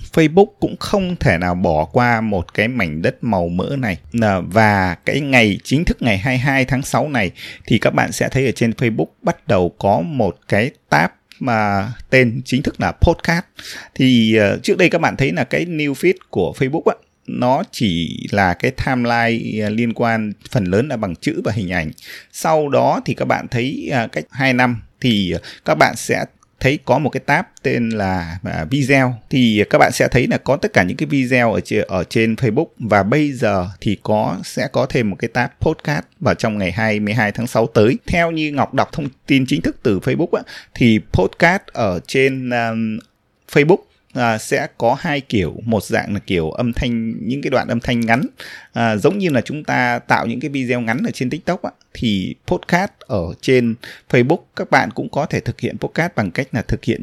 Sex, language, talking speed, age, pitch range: male, Vietnamese, 200 wpm, 20-39, 105-135 Hz